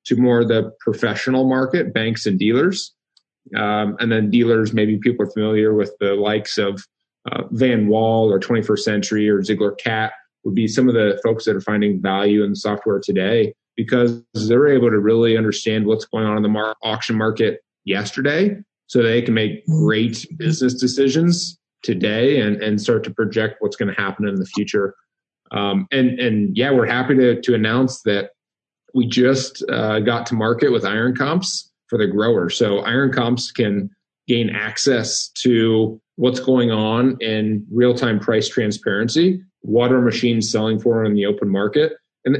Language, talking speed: English, 175 wpm